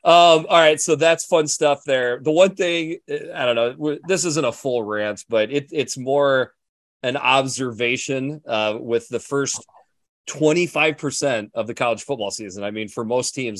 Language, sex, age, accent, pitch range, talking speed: English, male, 30-49, American, 110-150 Hz, 170 wpm